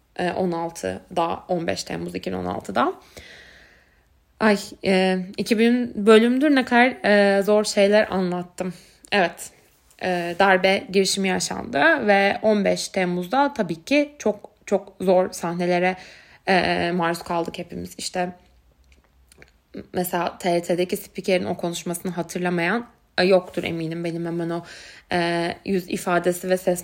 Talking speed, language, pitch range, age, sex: 115 wpm, Turkish, 175-210 Hz, 20-39, female